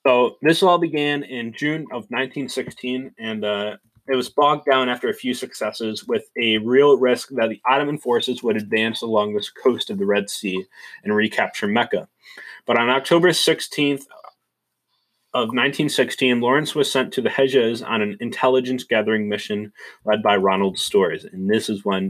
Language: English